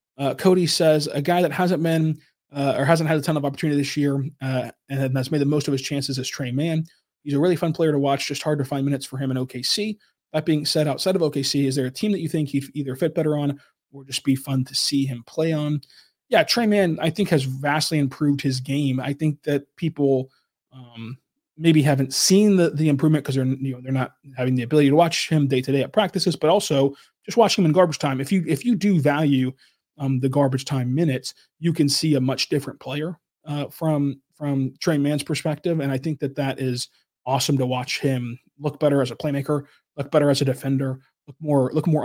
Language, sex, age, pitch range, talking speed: English, male, 20-39, 135-160 Hz, 240 wpm